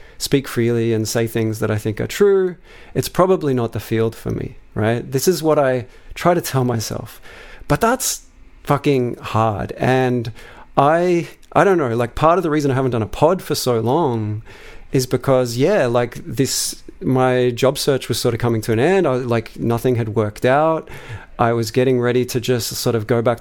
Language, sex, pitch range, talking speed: English, male, 115-140 Hz, 215 wpm